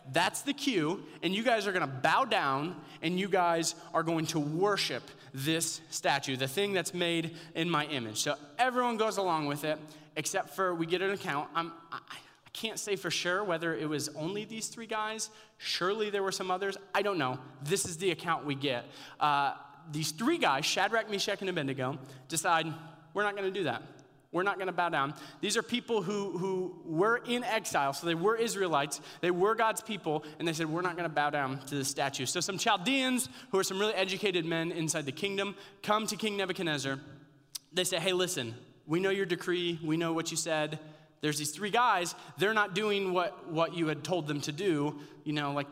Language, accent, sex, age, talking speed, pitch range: English, American, male, 30-49, 210 wpm, 150-195 Hz